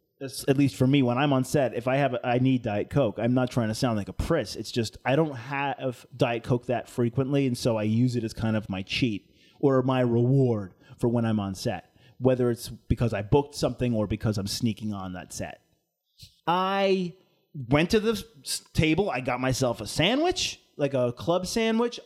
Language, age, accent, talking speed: English, 30-49, American, 210 wpm